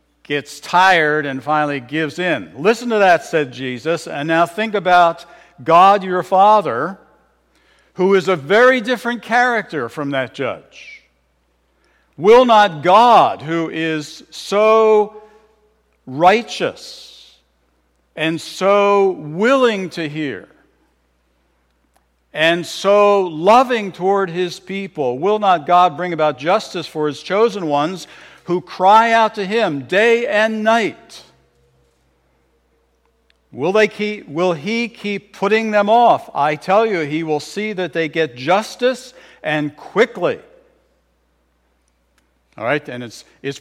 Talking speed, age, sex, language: 120 wpm, 60-79, male, English